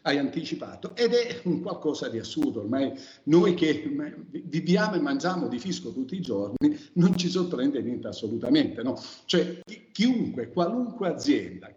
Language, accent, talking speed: Italian, native, 145 wpm